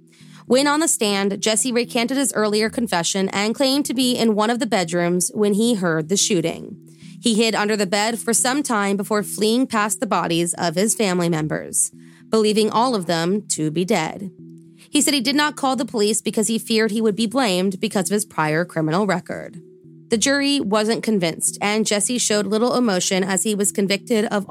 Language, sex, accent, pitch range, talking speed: English, female, American, 180-235 Hz, 200 wpm